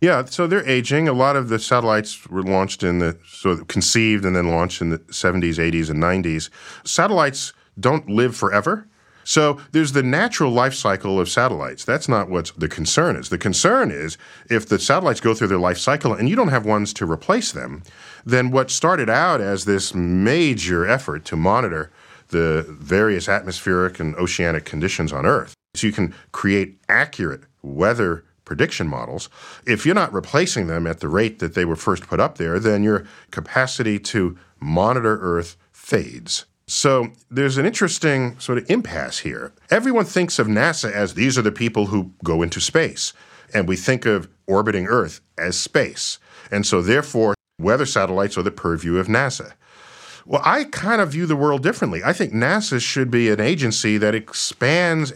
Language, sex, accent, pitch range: English, male, American, 90-130 Hz